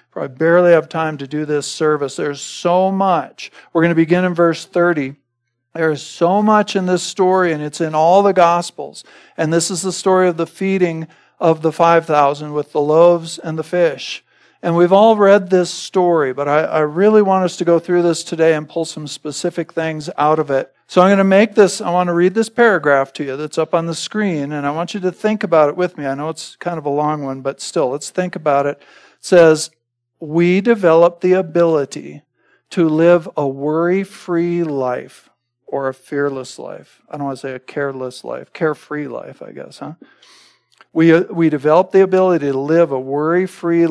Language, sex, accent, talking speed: English, male, American, 210 wpm